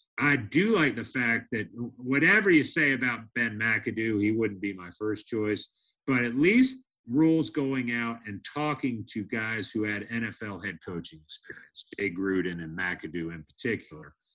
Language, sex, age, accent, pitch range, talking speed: English, male, 50-69, American, 105-145 Hz, 165 wpm